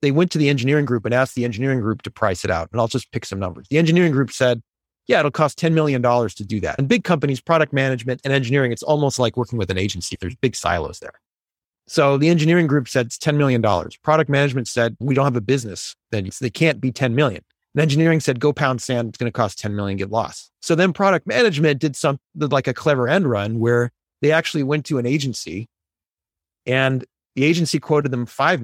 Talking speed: 235 wpm